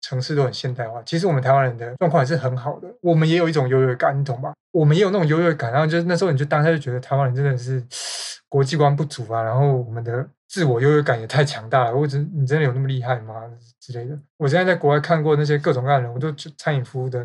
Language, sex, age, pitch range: Chinese, male, 20-39, 130-155 Hz